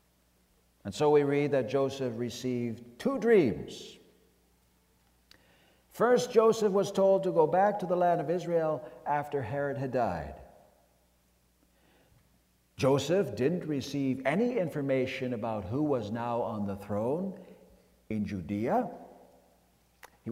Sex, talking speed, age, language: male, 120 wpm, 60-79, English